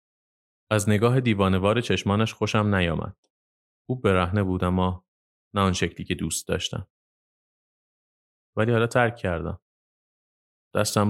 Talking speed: 115 wpm